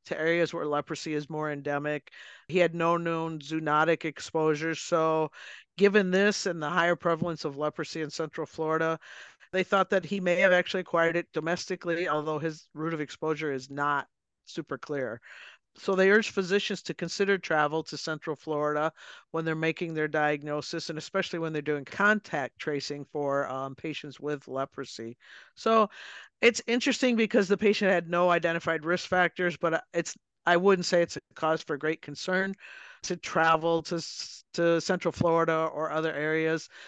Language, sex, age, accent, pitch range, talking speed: English, male, 50-69, American, 155-180 Hz, 165 wpm